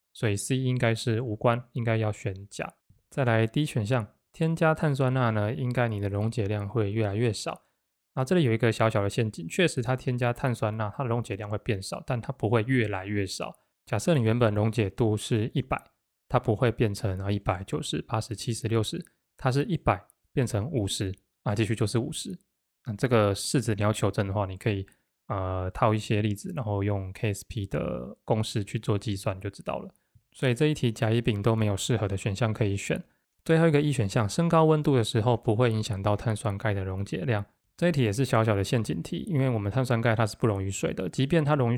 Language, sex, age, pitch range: Chinese, male, 20-39, 105-125 Hz